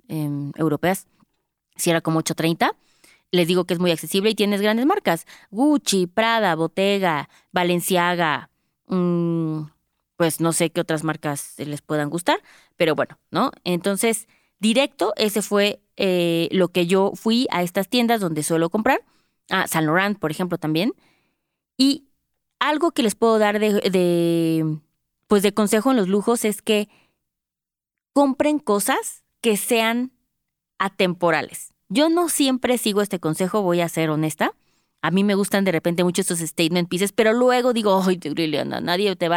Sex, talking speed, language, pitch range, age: female, 155 wpm, Spanish, 170-230 Hz, 20-39